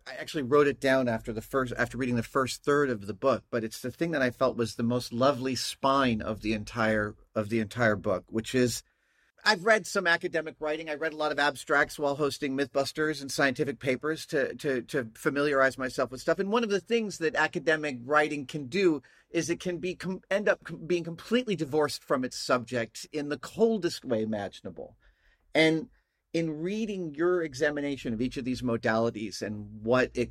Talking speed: 200 wpm